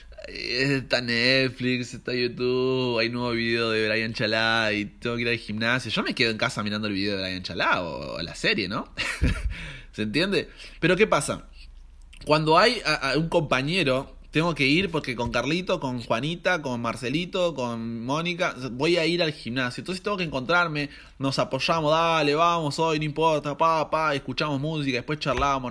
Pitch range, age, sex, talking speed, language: 105-165 Hz, 20-39, male, 175 wpm, Spanish